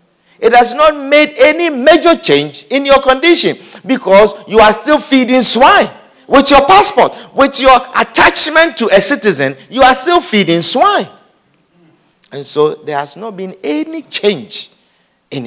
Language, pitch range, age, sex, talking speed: English, 170-270 Hz, 50-69, male, 150 wpm